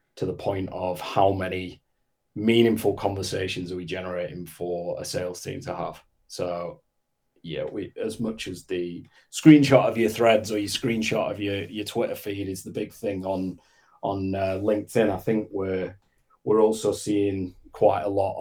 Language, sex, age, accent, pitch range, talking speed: English, male, 30-49, British, 90-105 Hz, 175 wpm